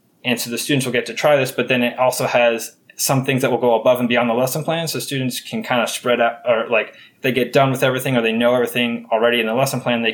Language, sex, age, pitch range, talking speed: English, male, 20-39, 115-130 Hz, 290 wpm